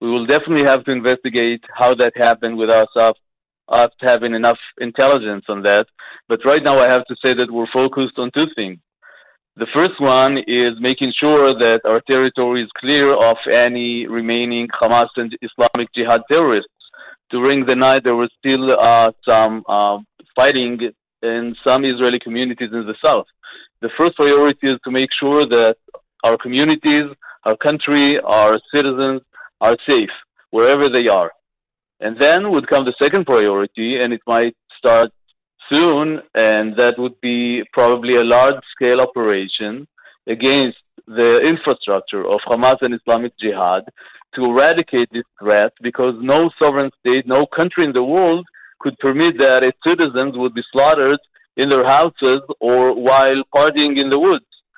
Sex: male